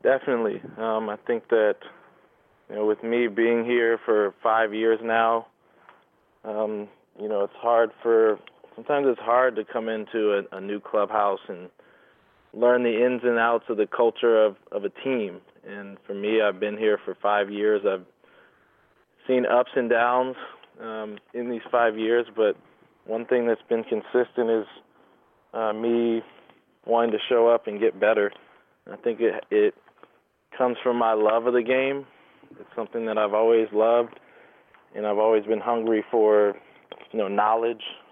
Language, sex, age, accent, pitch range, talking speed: English, male, 20-39, American, 110-125 Hz, 165 wpm